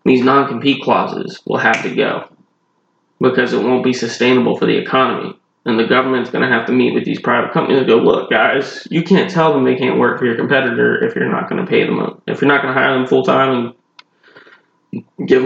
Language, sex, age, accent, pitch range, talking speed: English, male, 20-39, American, 125-140 Hz, 235 wpm